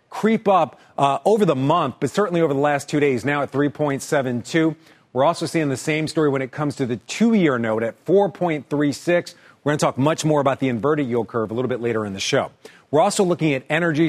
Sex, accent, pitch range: male, American, 130-165 Hz